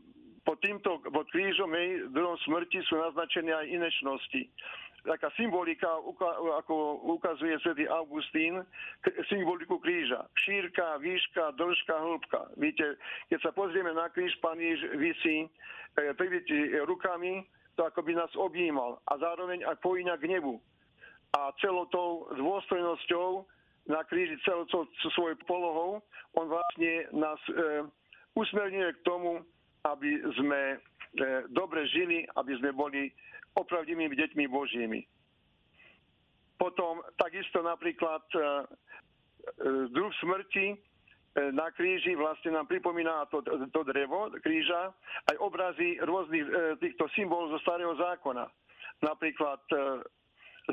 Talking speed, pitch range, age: 115 wpm, 160-190 Hz, 50-69